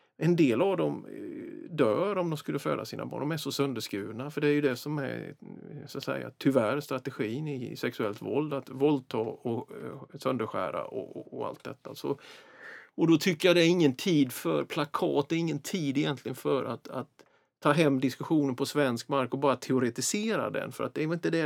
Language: Swedish